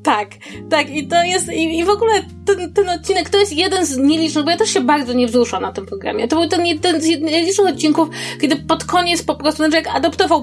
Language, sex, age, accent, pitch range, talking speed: Polish, female, 20-39, native, 255-325 Hz, 240 wpm